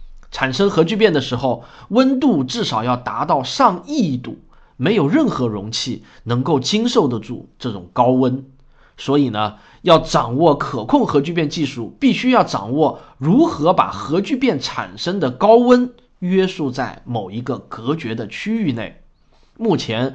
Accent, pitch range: native, 120-185 Hz